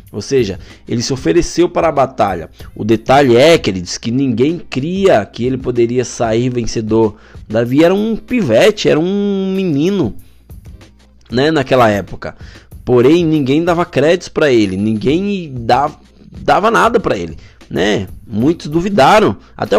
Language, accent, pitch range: Portuguese, Brazilian, 115-170 Hz